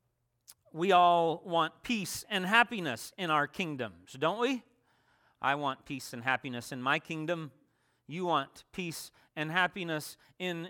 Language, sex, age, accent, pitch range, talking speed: English, male, 40-59, American, 120-180 Hz, 140 wpm